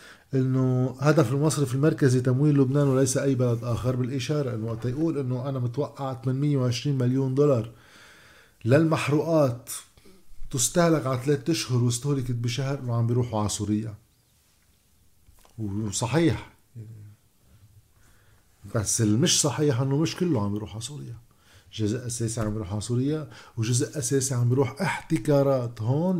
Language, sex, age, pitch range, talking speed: Arabic, male, 50-69, 110-145 Hz, 120 wpm